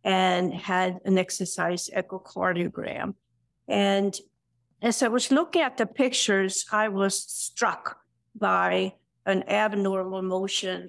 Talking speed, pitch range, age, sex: 110 wpm, 185-205 Hz, 50-69, female